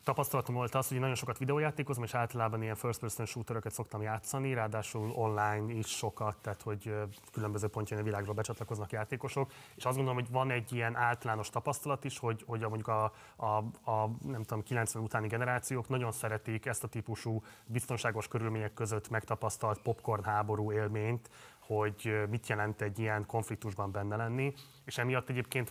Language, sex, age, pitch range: Hungarian, male, 30-49, 110-120 Hz